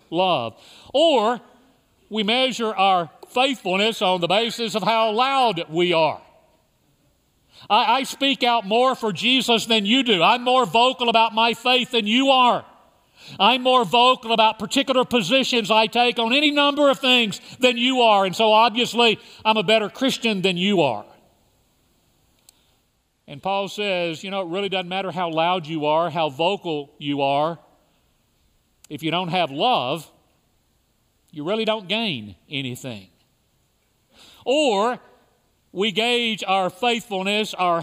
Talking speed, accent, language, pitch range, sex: 145 wpm, American, English, 185-245 Hz, male